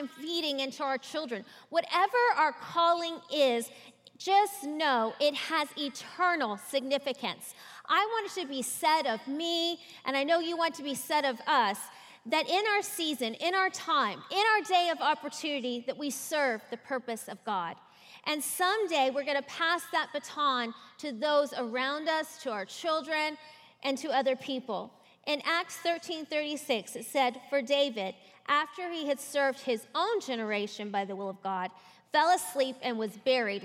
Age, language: 30-49, English